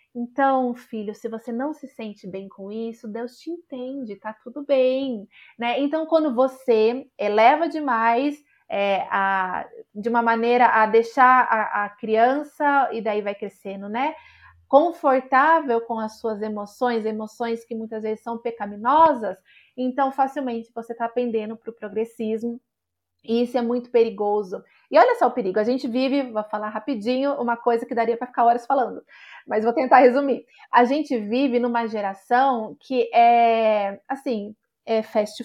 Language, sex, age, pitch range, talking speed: Portuguese, female, 30-49, 220-265 Hz, 150 wpm